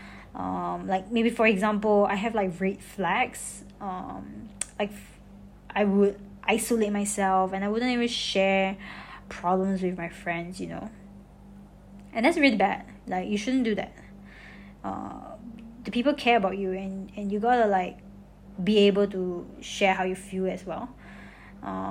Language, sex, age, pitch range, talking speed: English, female, 20-39, 195-255 Hz, 155 wpm